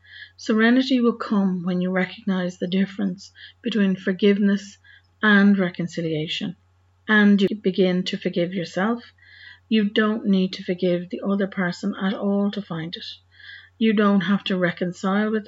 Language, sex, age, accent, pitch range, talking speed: English, female, 40-59, Irish, 175-205 Hz, 145 wpm